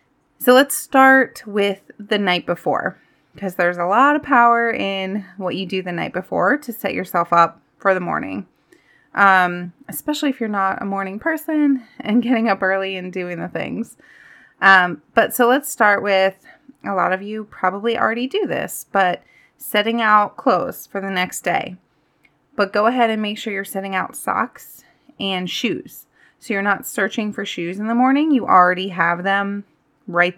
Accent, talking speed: American, 180 wpm